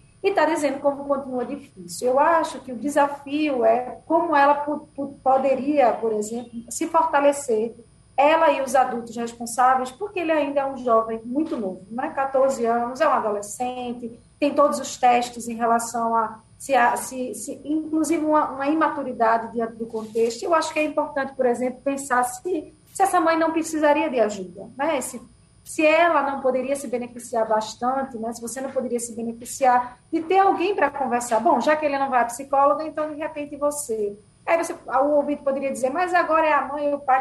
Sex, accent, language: female, Brazilian, Portuguese